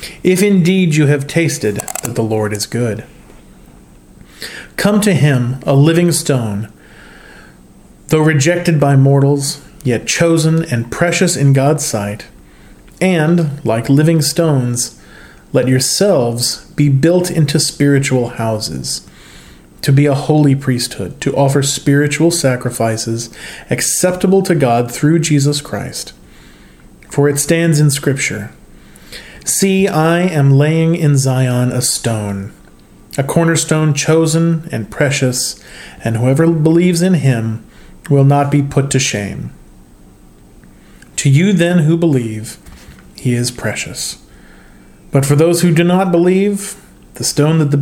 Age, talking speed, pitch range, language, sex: 40-59, 125 wpm, 125-165 Hz, English, male